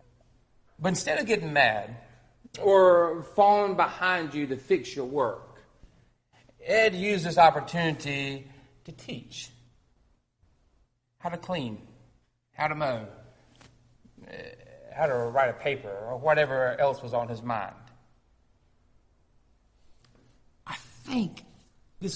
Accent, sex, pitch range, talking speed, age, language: American, male, 115-170 Hz, 110 wpm, 40-59, English